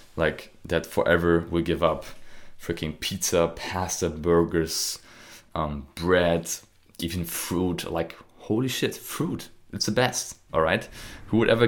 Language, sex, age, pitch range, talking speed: English, male, 20-39, 80-90 Hz, 135 wpm